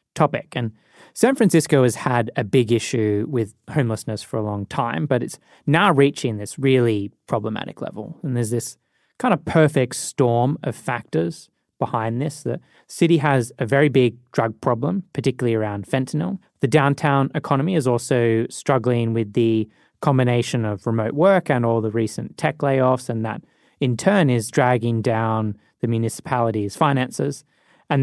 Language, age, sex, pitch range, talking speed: English, 20-39, male, 115-145 Hz, 160 wpm